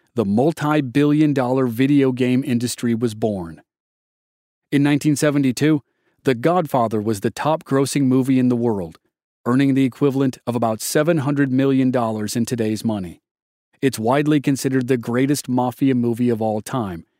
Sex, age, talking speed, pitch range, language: male, 40-59, 135 wpm, 115-145 Hz, English